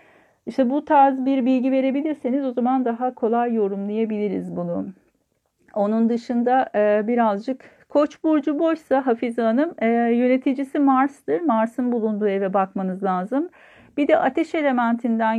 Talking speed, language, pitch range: 120 wpm, Turkish, 210-270 Hz